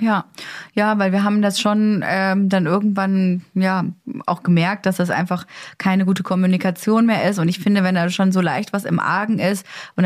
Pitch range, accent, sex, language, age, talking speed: 170-200 Hz, German, female, German, 20-39, 205 wpm